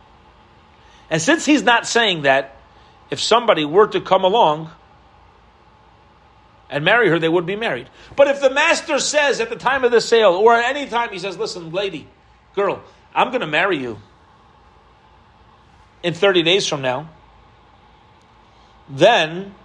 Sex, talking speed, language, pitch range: male, 155 wpm, English, 145-195 Hz